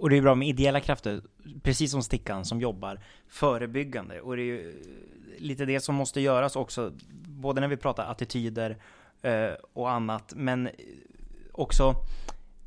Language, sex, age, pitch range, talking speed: Swedish, male, 20-39, 105-135 Hz, 150 wpm